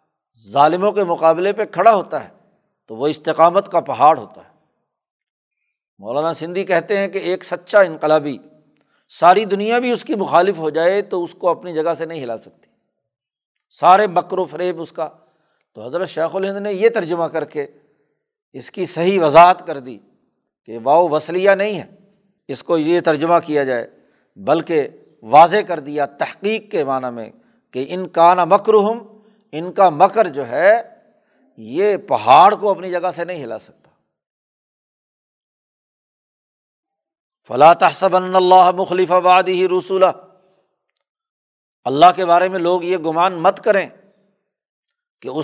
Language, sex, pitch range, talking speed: Urdu, male, 160-200 Hz, 150 wpm